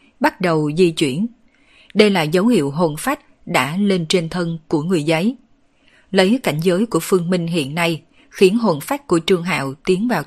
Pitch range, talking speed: 165-220 Hz, 195 wpm